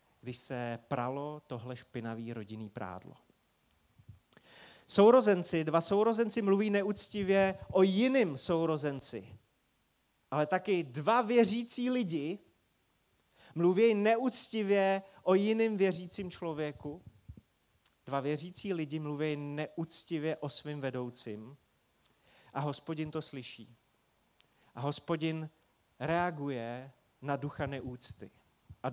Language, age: Czech, 30-49